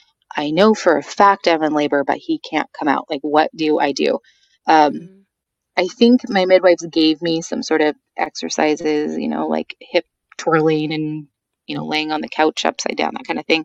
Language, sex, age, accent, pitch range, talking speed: English, female, 30-49, American, 150-180 Hz, 205 wpm